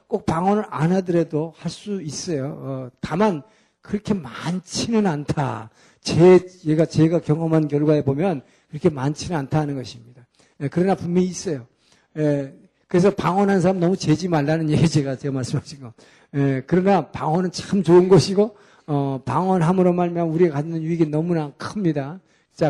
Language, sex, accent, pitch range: Korean, male, native, 150-195 Hz